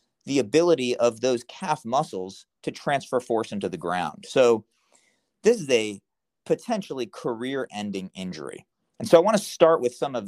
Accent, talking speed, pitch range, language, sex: American, 165 wpm, 105-155 Hz, English, male